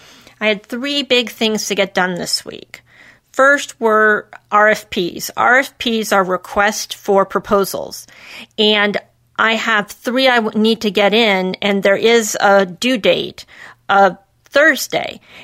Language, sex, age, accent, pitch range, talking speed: English, female, 40-59, American, 195-220 Hz, 135 wpm